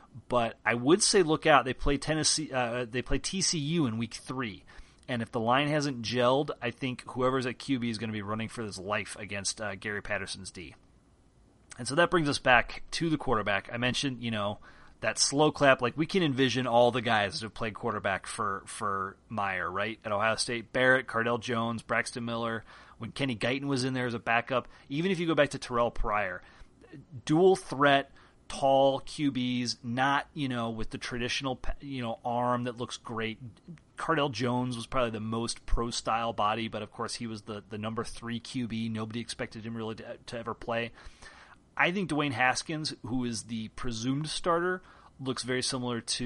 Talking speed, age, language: 195 wpm, 30-49, English